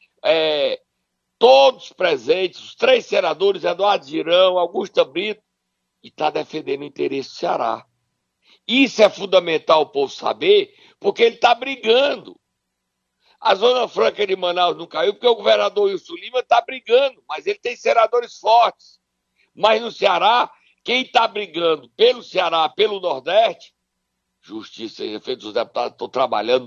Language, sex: Portuguese, male